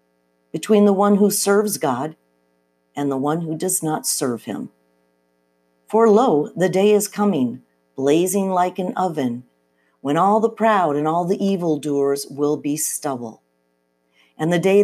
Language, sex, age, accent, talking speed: English, female, 50-69, American, 155 wpm